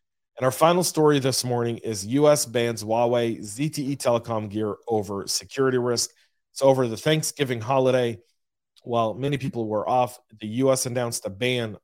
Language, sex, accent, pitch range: English, male, American, 110-130 Hz